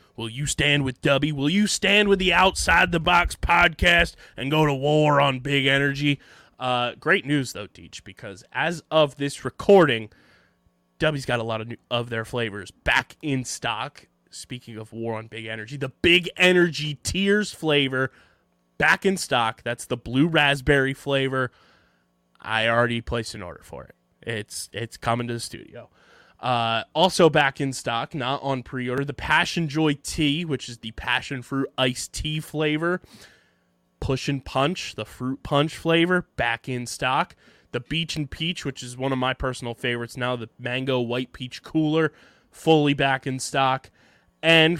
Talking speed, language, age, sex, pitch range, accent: 170 wpm, English, 20-39, male, 120-155 Hz, American